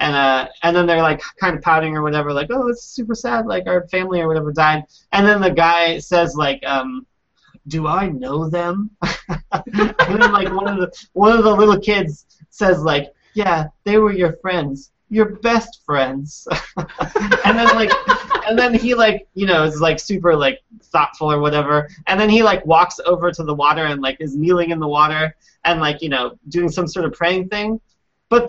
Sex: male